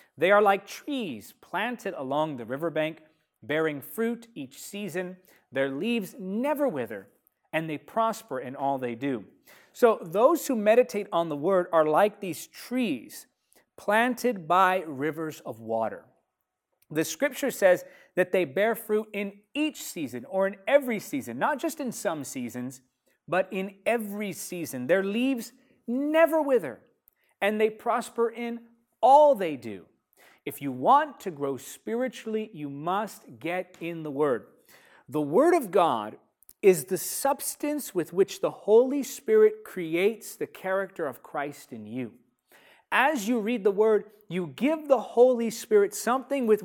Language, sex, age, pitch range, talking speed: English, male, 30-49, 160-245 Hz, 150 wpm